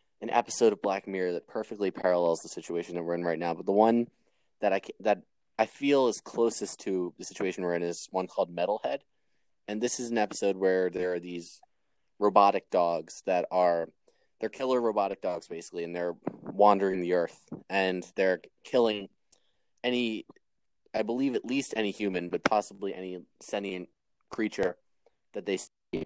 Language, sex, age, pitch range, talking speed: English, male, 20-39, 90-105 Hz, 175 wpm